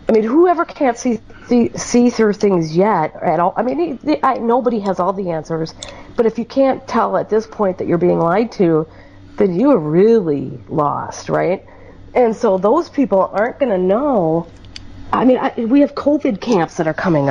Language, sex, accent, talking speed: English, female, American, 210 wpm